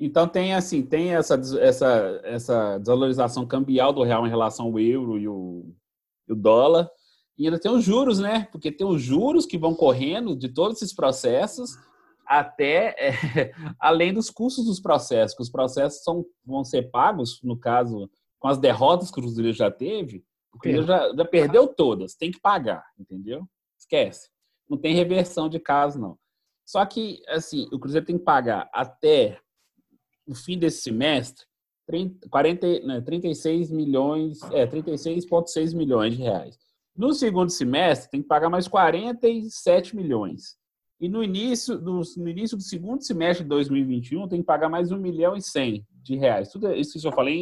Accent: Brazilian